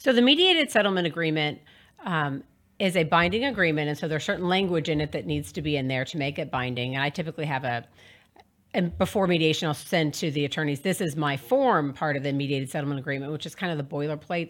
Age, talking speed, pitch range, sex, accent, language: 40-59, 235 wpm, 145-185 Hz, female, American, English